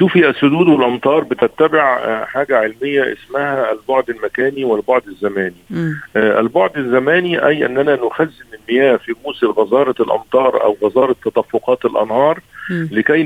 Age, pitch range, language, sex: 50-69, 125-165 Hz, Arabic, male